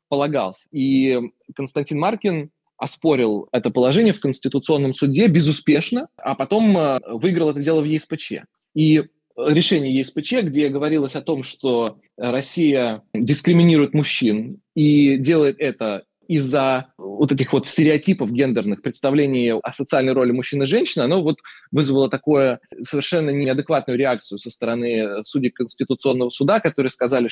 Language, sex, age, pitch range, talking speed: Russian, male, 20-39, 130-160 Hz, 130 wpm